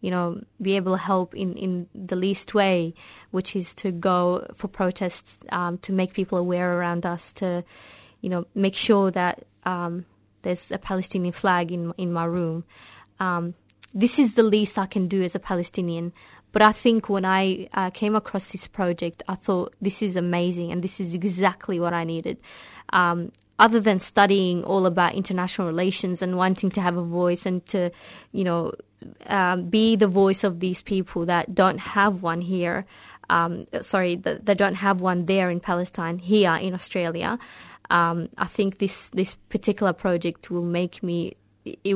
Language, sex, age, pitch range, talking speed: English, female, 20-39, 175-200 Hz, 180 wpm